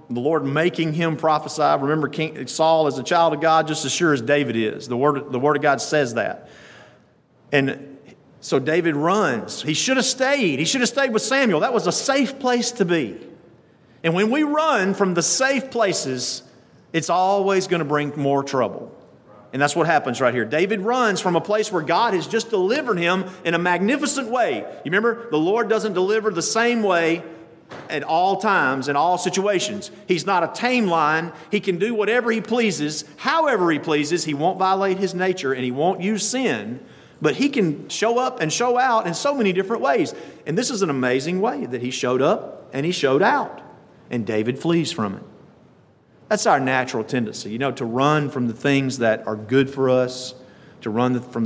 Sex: male